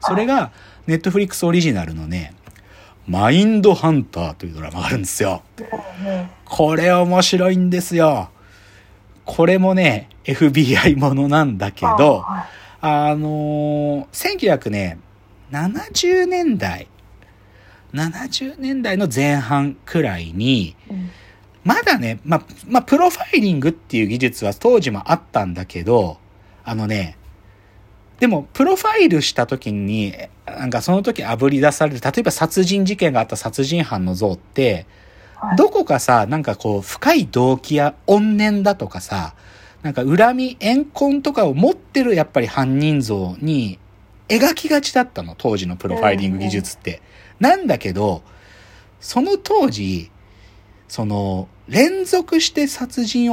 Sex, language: male, Japanese